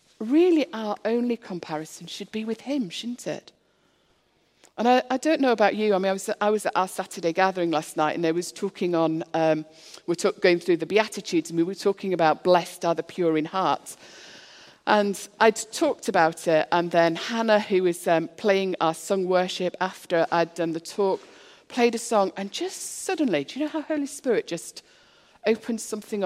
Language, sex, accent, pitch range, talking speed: English, female, British, 170-230 Hz, 200 wpm